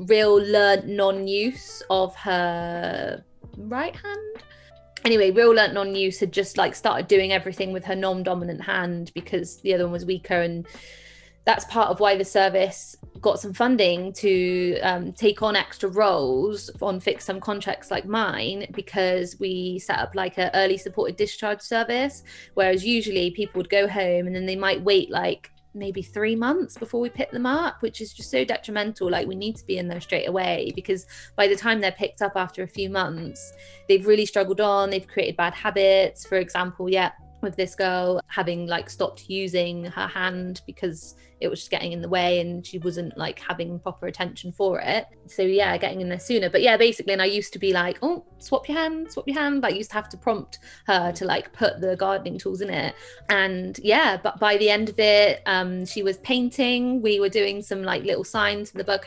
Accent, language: British, English